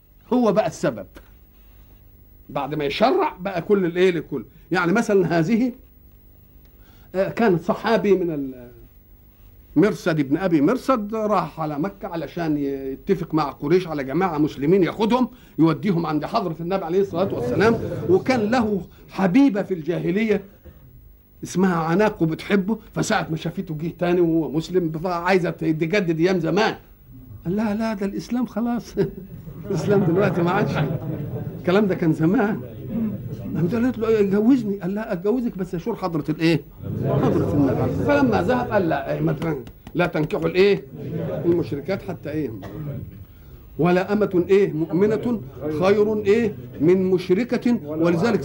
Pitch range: 150-200 Hz